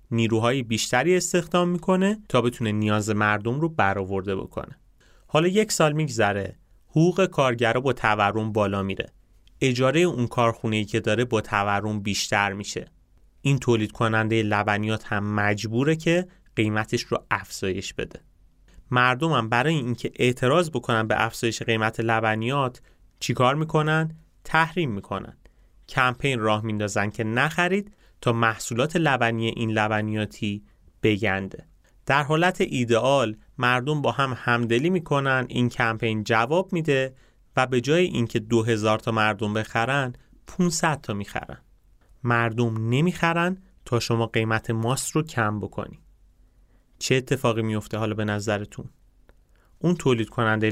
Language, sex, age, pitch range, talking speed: Persian, male, 30-49, 105-135 Hz, 130 wpm